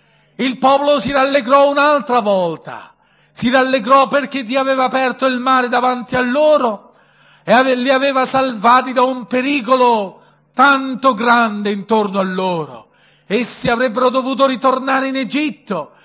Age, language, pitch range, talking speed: 50-69, Italian, 230-285 Hz, 130 wpm